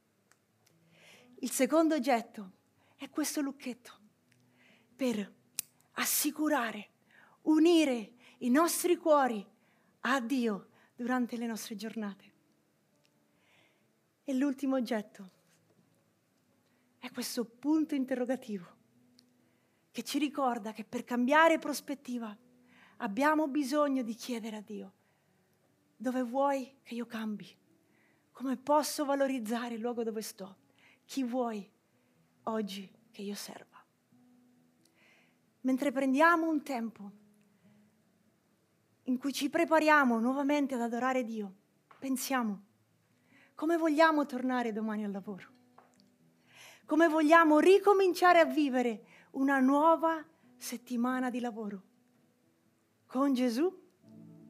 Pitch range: 215-285 Hz